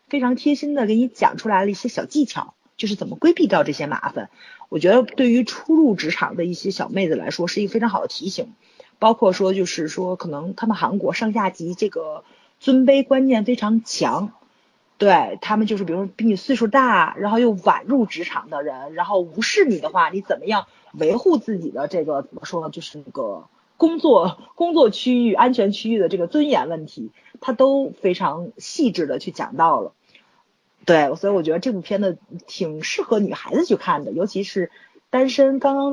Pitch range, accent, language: 185-250 Hz, native, Chinese